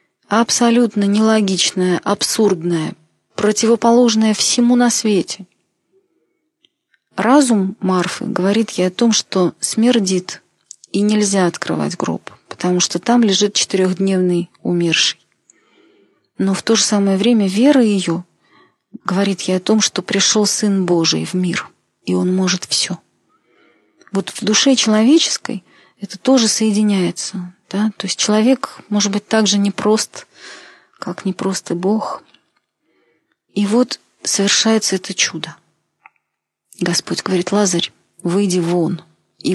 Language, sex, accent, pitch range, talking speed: Russian, female, native, 180-225 Hz, 115 wpm